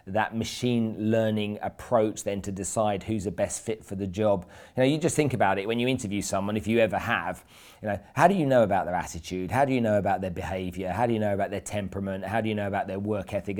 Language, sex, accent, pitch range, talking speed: English, male, British, 105-120 Hz, 265 wpm